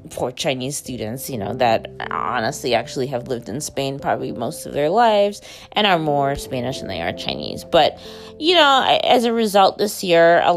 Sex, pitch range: female, 130-170 Hz